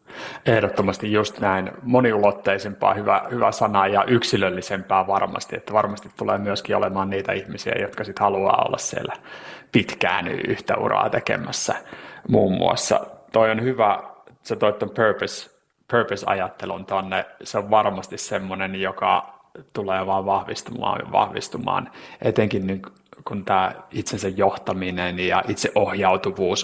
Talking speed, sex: 125 wpm, male